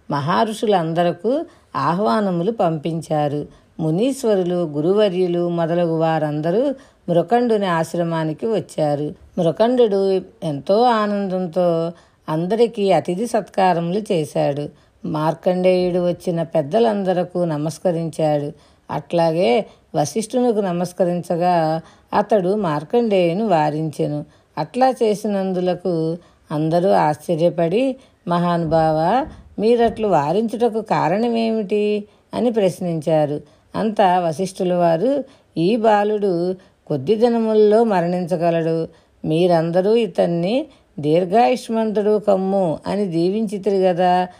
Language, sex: Telugu, female